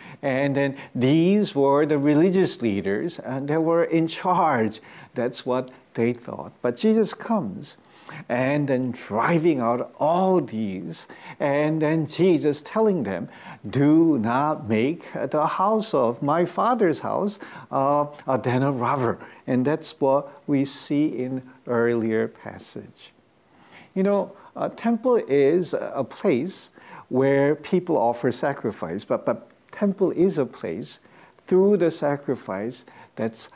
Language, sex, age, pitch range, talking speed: English, male, 50-69, 120-170 Hz, 130 wpm